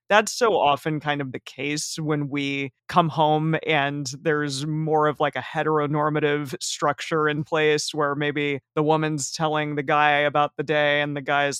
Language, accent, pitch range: English, American, 145-160 Hz